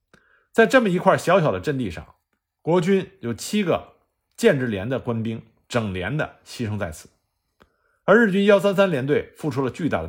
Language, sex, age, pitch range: Chinese, male, 50-69, 100-165 Hz